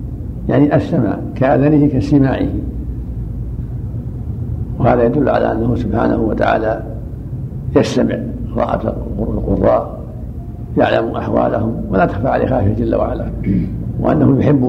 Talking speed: 95 wpm